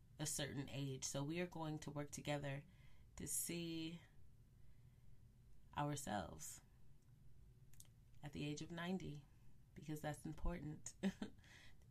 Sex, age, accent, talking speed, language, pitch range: female, 30-49, American, 110 wpm, English, 125-155 Hz